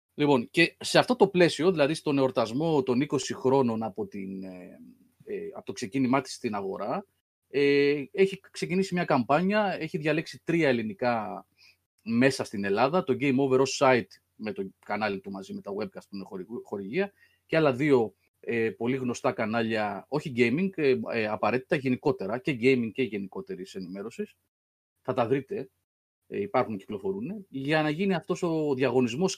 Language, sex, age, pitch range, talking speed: Greek, male, 30-49, 110-175 Hz, 155 wpm